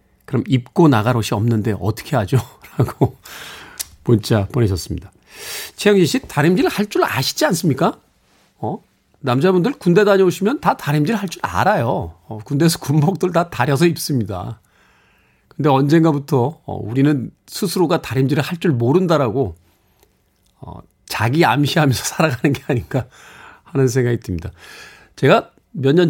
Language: Korean